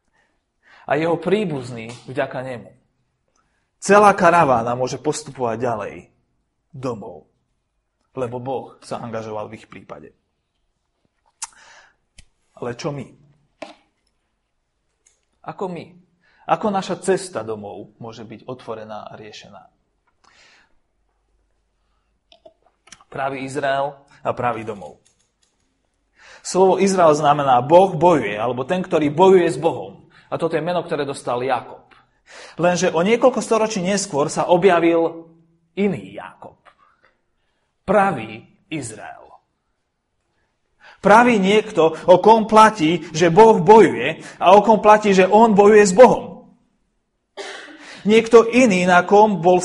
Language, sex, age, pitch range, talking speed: Slovak, male, 30-49, 145-205 Hz, 105 wpm